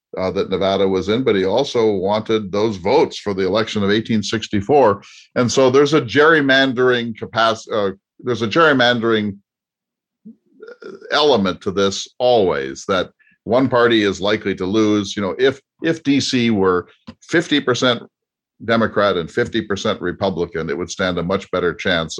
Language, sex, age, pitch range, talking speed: English, male, 50-69, 90-120 Hz, 155 wpm